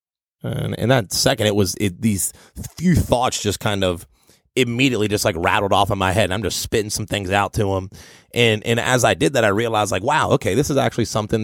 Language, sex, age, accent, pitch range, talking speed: English, male, 30-49, American, 100-115 Hz, 235 wpm